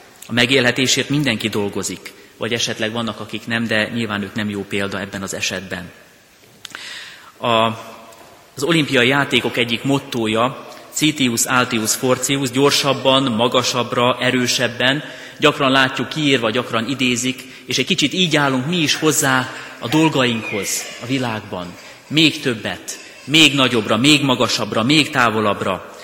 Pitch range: 110-135 Hz